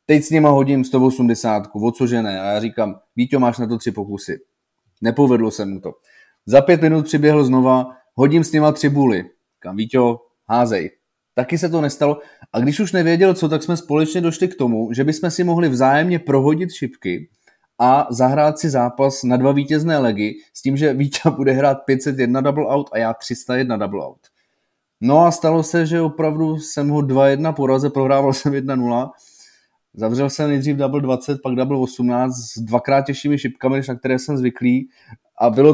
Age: 20-39